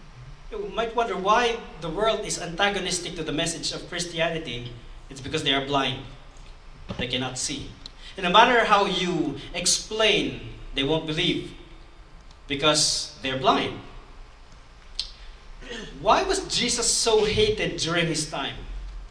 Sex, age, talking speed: male, 40-59, 130 wpm